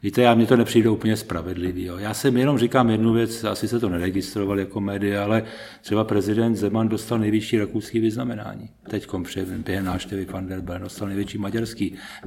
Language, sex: Czech, male